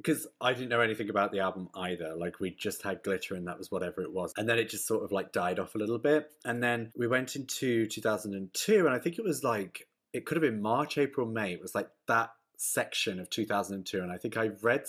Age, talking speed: 30-49, 255 wpm